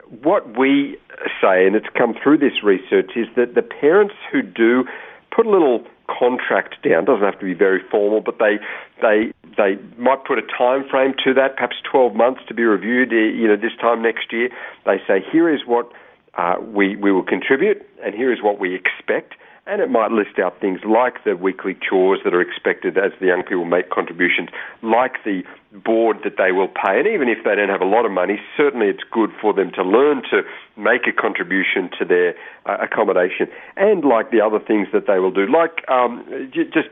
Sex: male